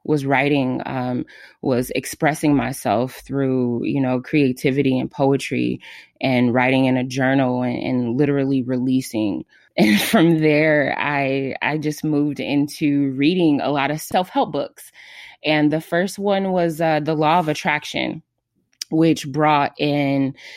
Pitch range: 135-155 Hz